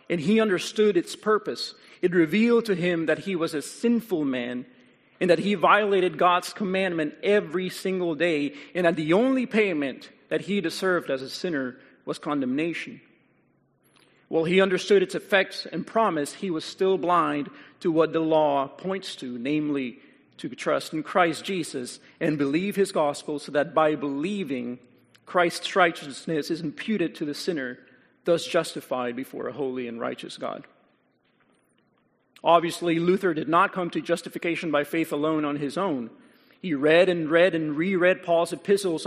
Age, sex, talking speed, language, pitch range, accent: 40-59, male, 160 wpm, English, 150-185 Hz, American